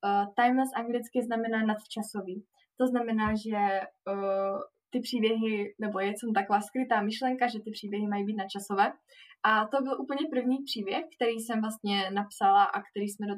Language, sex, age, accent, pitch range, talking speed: Czech, female, 20-39, native, 210-250 Hz, 165 wpm